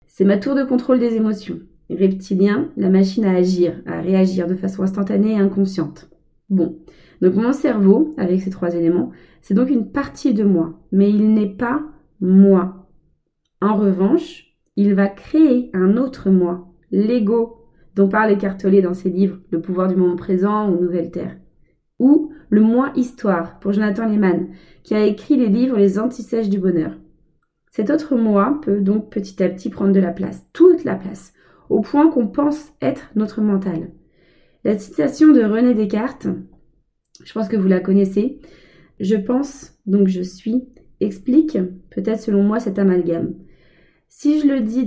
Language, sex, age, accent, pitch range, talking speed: French, female, 20-39, French, 185-230 Hz, 165 wpm